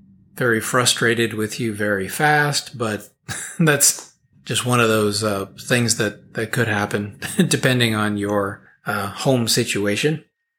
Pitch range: 105-135 Hz